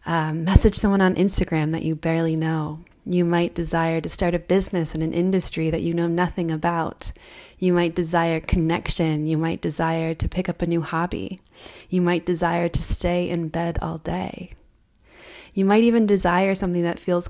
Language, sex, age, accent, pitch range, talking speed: English, female, 20-39, American, 165-185 Hz, 185 wpm